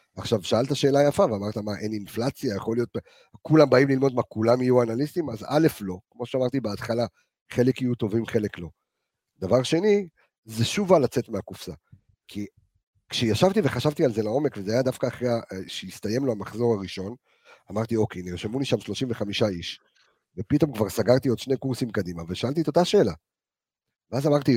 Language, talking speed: Hebrew, 170 wpm